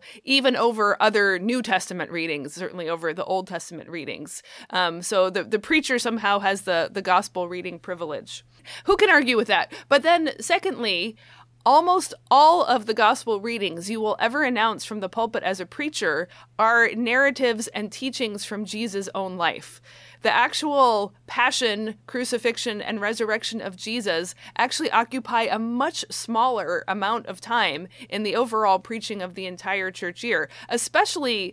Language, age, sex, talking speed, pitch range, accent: English, 30-49, female, 155 wpm, 195-255 Hz, American